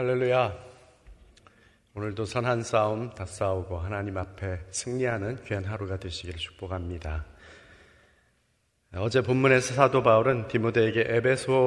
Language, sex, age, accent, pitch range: Korean, male, 30-49, native, 100-125 Hz